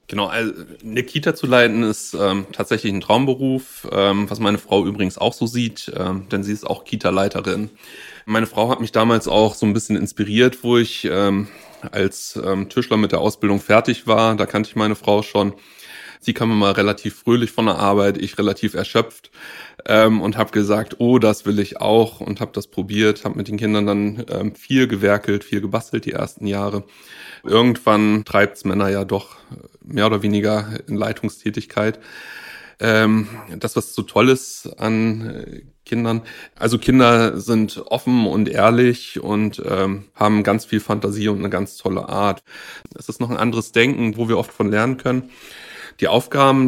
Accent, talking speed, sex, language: German, 175 wpm, male, German